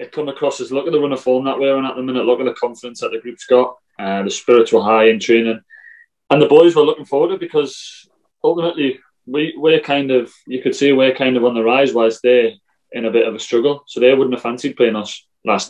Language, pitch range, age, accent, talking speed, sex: English, 115-140 Hz, 20-39, British, 270 wpm, male